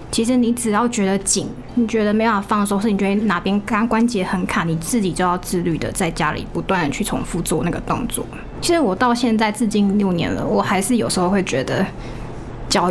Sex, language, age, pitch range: female, Chinese, 20-39, 190-235 Hz